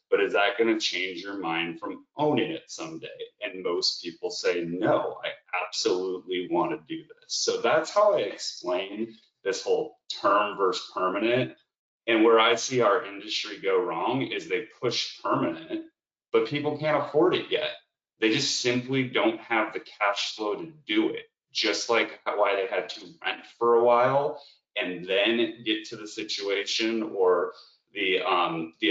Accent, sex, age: American, male, 30-49